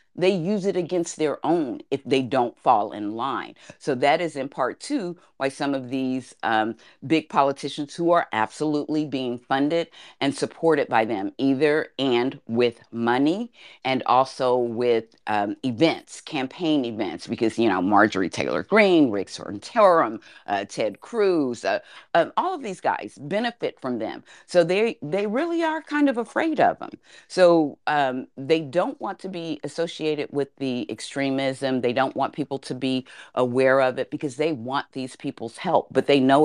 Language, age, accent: English, 40-59, American